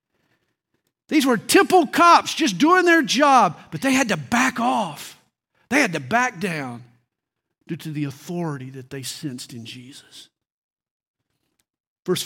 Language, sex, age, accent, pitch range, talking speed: English, male, 50-69, American, 165-270 Hz, 140 wpm